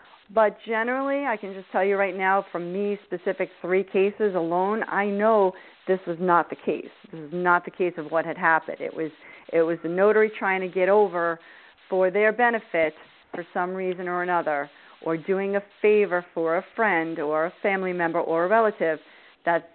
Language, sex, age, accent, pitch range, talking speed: English, female, 40-59, American, 170-200 Hz, 195 wpm